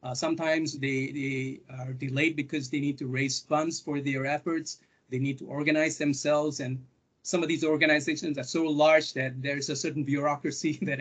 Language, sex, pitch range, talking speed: English, male, 135-160 Hz, 185 wpm